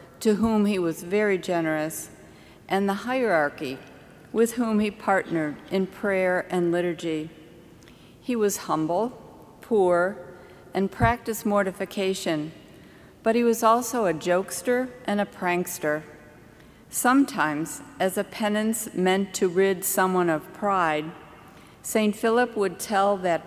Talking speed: 125 wpm